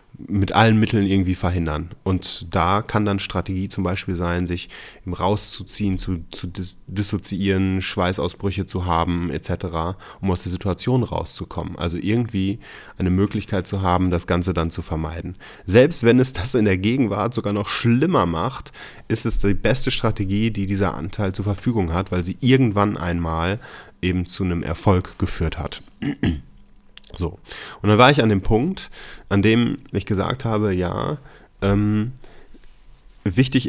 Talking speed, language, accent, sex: 155 wpm, German, German, male